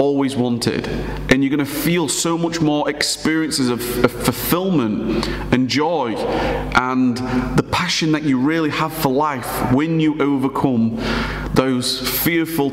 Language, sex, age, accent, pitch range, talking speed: English, male, 30-49, British, 125-150 Hz, 130 wpm